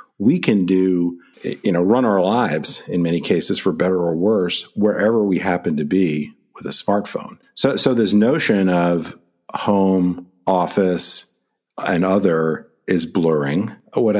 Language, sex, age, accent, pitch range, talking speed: English, male, 50-69, American, 85-95 Hz, 150 wpm